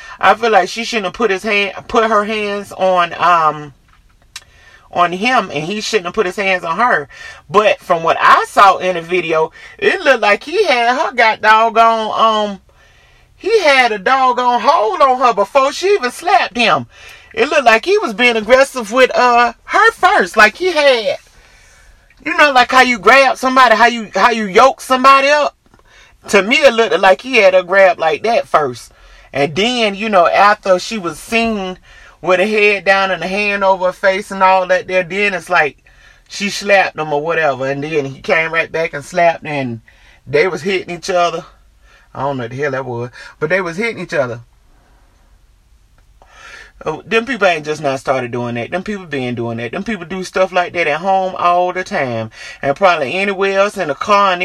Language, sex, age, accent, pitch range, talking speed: English, male, 30-49, American, 160-230 Hz, 205 wpm